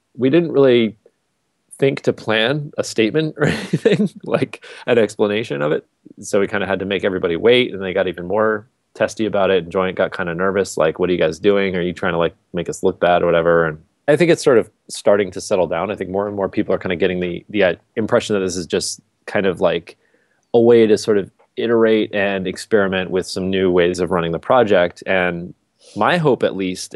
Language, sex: English, male